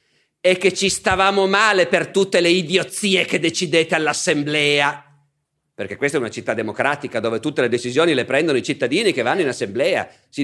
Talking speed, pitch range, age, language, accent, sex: 180 wpm, 150-200 Hz, 50-69, Italian, native, male